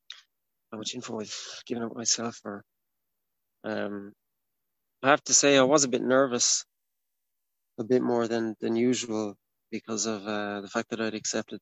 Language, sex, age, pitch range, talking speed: English, male, 30-49, 110-120 Hz, 165 wpm